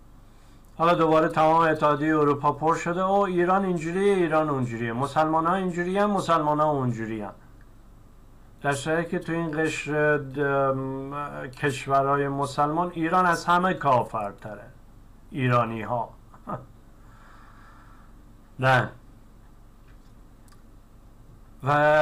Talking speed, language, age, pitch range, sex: 85 wpm, Persian, 50-69, 110-150 Hz, male